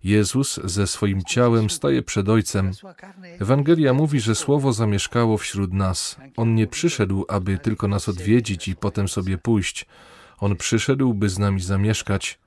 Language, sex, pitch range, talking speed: Polish, male, 100-125 Hz, 150 wpm